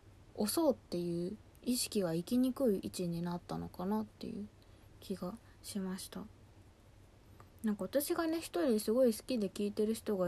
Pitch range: 180-235 Hz